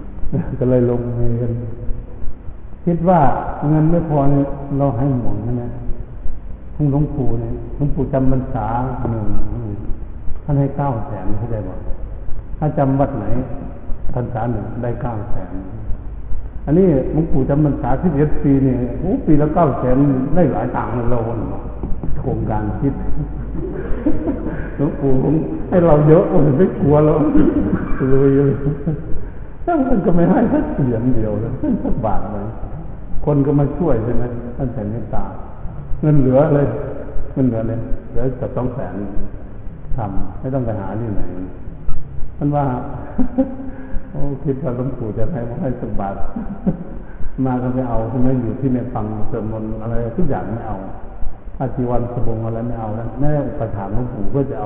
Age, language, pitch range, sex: 60-79, Thai, 110-140 Hz, male